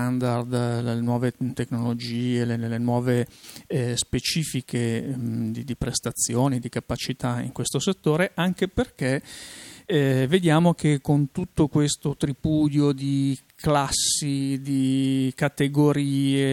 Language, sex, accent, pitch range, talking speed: Italian, male, native, 120-145 Hz, 105 wpm